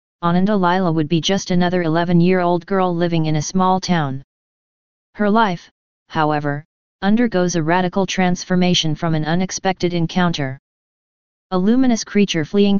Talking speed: 130 wpm